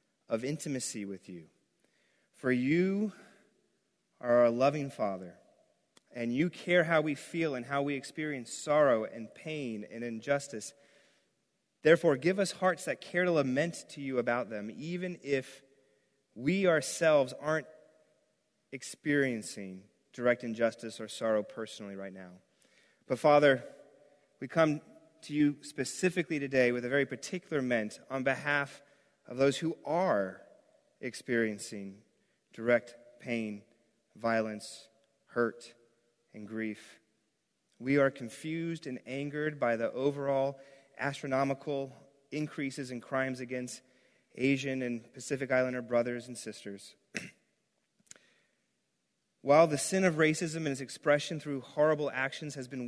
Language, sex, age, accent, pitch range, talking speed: English, male, 30-49, American, 120-150 Hz, 125 wpm